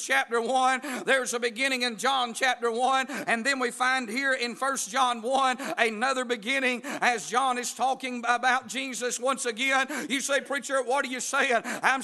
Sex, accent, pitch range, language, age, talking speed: male, American, 250-275 Hz, English, 50-69, 180 wpm